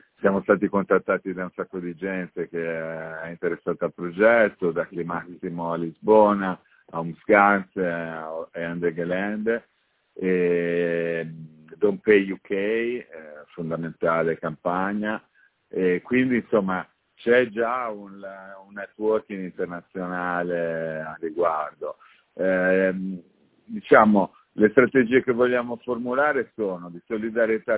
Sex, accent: male, native